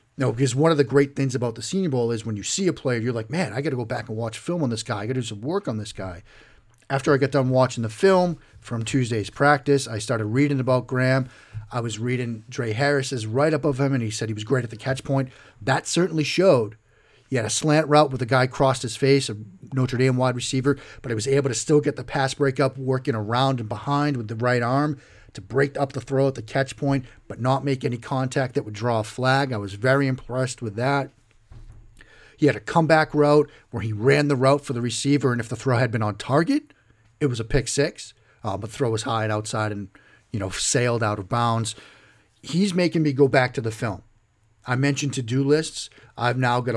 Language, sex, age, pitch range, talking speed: English, male, 40-59, 110-140 Hz, 245 wpm